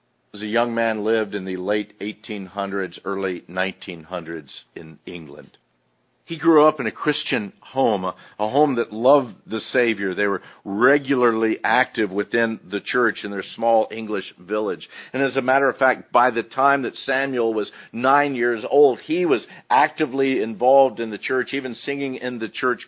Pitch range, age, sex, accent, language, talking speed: 115-145 Hz, 50-69, male, American, English, 175 wpm